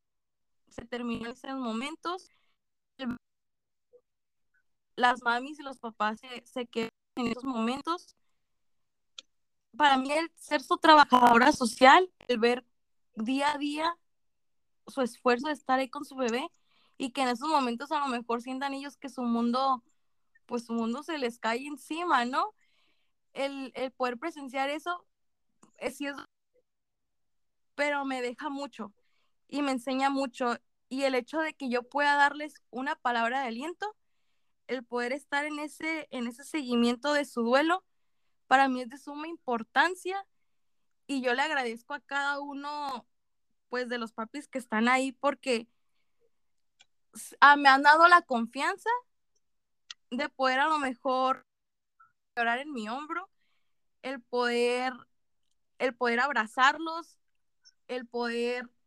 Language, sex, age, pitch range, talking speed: Spanish, female, 20-39, 245-295 Hz, 140 wpm